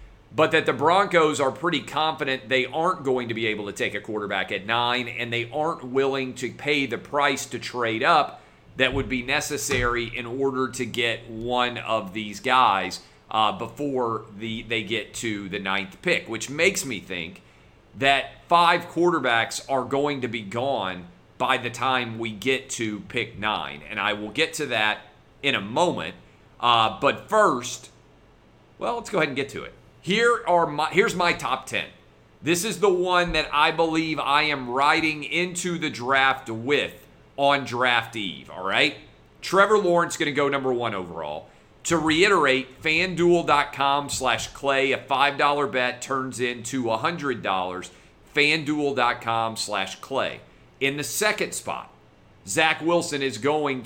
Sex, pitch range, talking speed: male, 115-150 Hz, 165 wpm